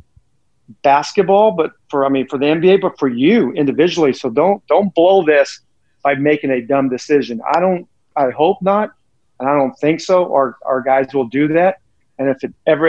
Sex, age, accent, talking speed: male, 50-69, American, 195 wpm